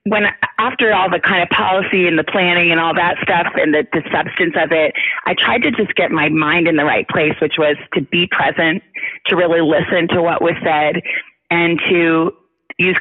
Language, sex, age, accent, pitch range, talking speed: English, female, 30-49, American, 160-200 Hz, 210 wpm